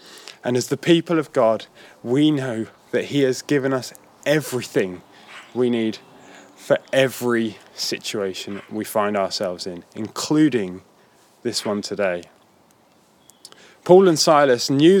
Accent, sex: British, male